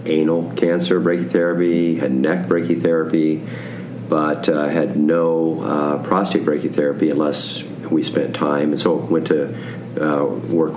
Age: 50-69